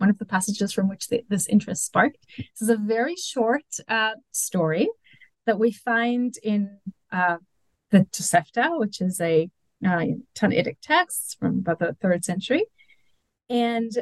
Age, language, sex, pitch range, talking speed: 30-49, English, female, 185-245 Hz, 155 wpm